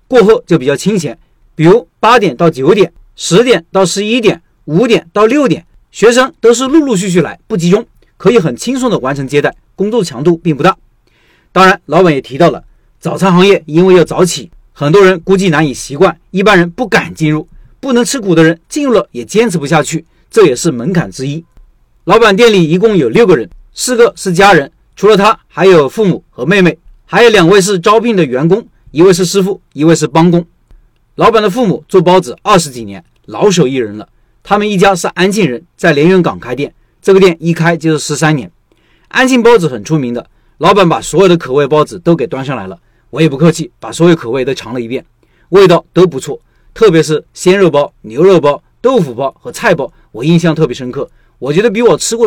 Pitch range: 150-200 Hz